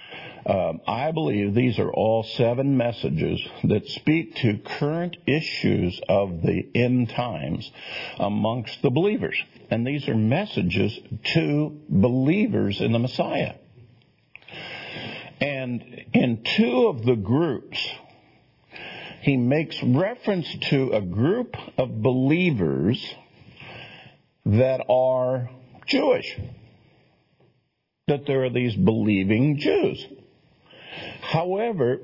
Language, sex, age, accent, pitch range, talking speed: English, male, 50-69, American, 110-155 Hz, 100 wpm